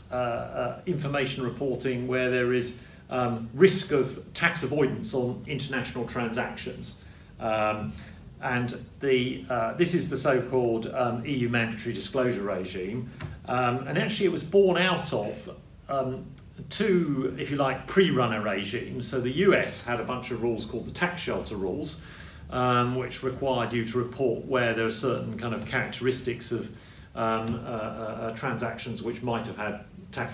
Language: English